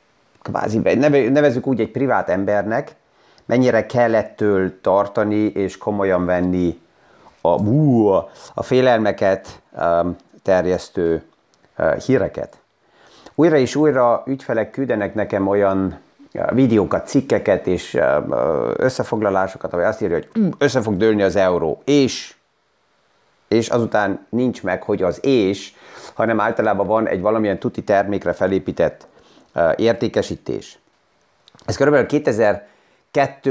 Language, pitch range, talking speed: Hungarian, 100-125 Hz, 105 wpm